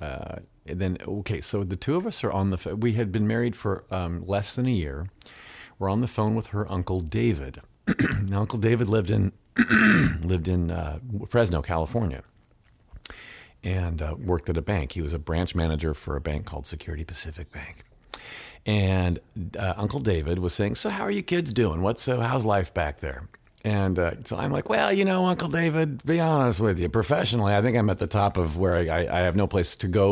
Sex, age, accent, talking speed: male, 50-69, American, 215 wpm